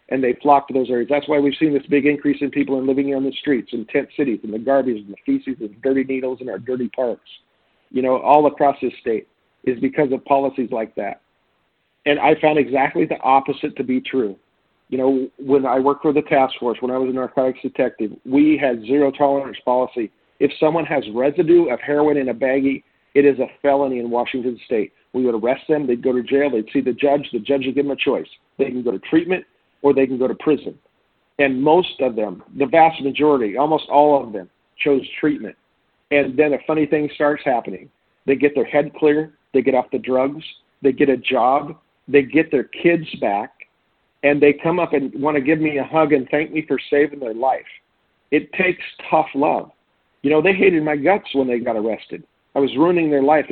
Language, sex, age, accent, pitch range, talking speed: English, male, 50-69, American, 130-150 Hz, 225 wpm